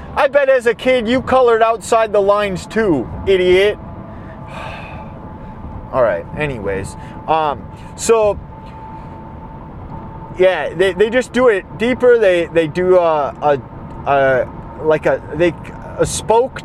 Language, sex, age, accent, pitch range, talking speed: English, male, 30-49, American, 160-230 Hz, 125 wpm